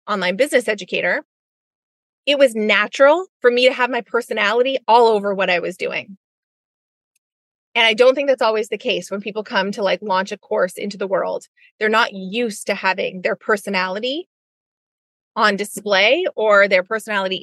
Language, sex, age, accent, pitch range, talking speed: English, female, 20-39, American, 195-240 Hz, 170 wpm